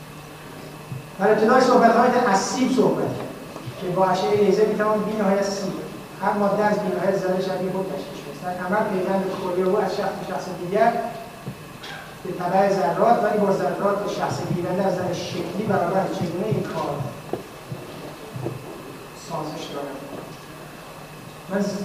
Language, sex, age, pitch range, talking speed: Persian, male, 30-49, 190-235 Hz, 130 wpm